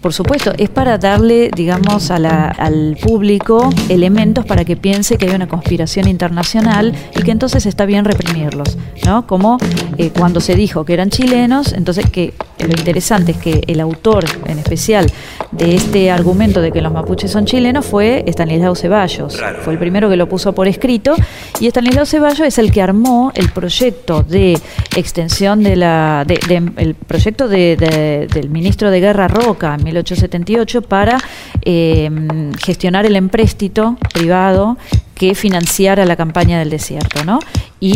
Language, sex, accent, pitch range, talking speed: Spanish, female, Argentinian, 170-215 Hz, 165 wpm